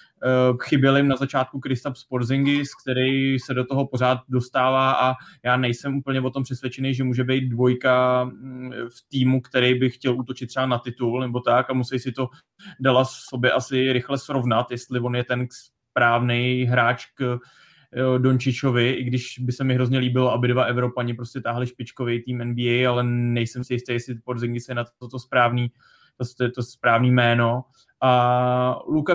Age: 20-39